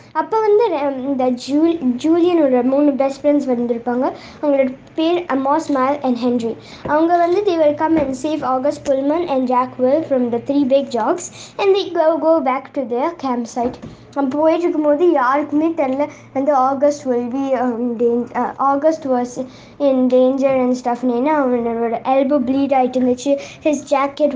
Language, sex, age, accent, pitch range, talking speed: Tamil, female, 20-39, native, 255-320 Hz, 175 wpm